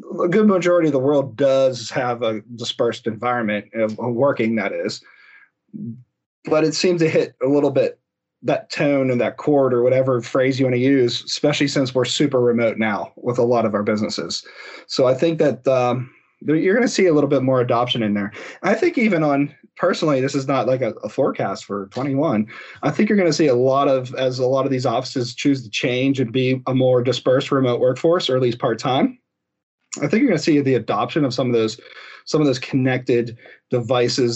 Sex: male